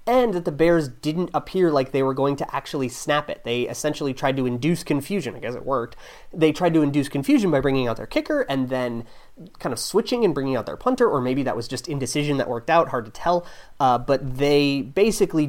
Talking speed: 230 wpm